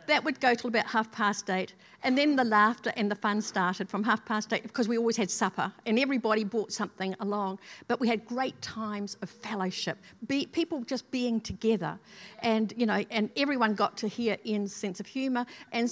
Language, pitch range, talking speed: English, 205-255 Hz, 205 wpm